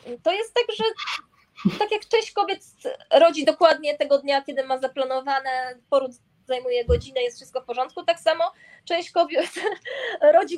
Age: 20-39